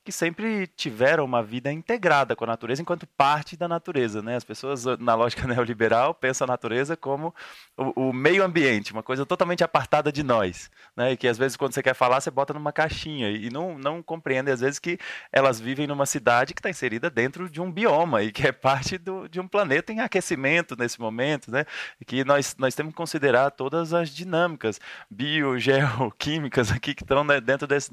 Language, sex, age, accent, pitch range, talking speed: Portuguese, male, 20-39, Brazilian, 120-155 Hz, 200 wpm